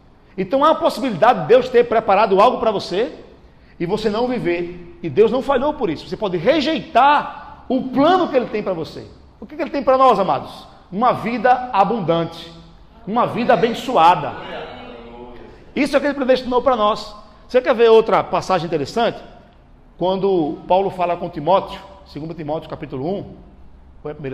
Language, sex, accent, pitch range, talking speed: Portuguese, male, Brazilian, 180-255 Hz, 170 wpm